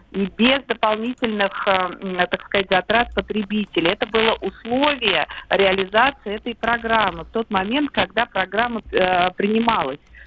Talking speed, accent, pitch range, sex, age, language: 110 wpm, native, 195-255 Hz, female, 50-69, Russian